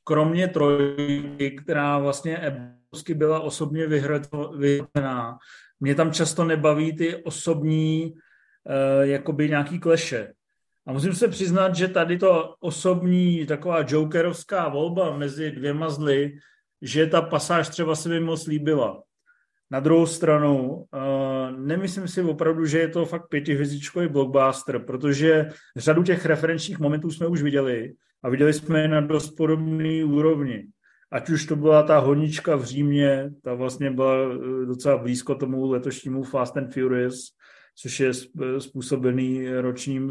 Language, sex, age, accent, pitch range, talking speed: Czech, male, 40-59, native, 135-160 Hz, 135 wpm